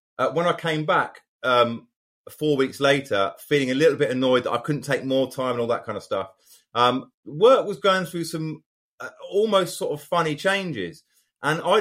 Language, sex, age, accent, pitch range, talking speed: English, male, 30-49, British, 120-160 Hz, 205 wpm